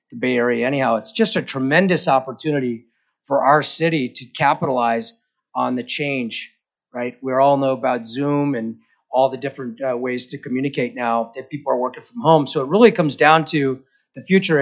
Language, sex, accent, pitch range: English, male, American, 125-155 Hz